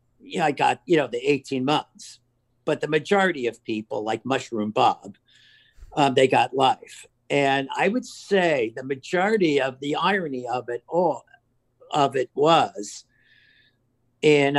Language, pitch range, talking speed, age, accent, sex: English, 110-150 Hz, 145 wpm, 50-69, American, male